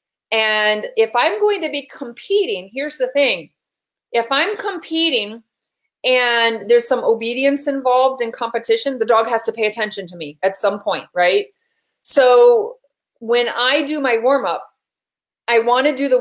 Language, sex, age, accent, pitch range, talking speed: English, female, 30-49, American, 220-290 Hz, 160 wpm